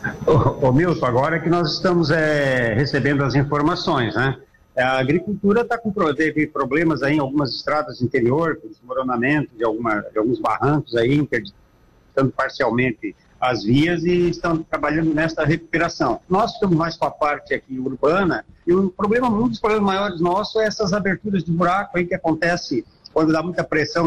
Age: 50-69